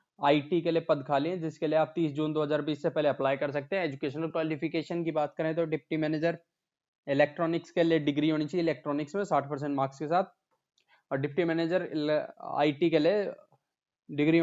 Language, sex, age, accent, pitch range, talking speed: Hindi, male, 20-39, native, 150-170 Hz, 190 wpm